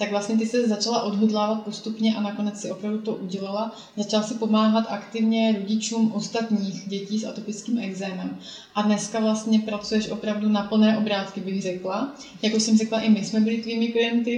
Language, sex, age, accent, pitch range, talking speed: Czech, female, 30-49, native, 200-225 Hz, 175 wpm